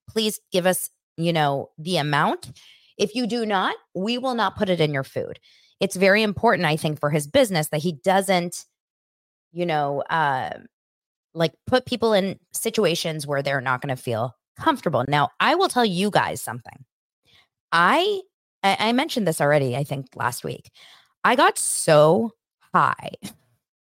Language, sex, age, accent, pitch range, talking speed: English, female, 20-39, American, 150-225 Hz, 165 wpm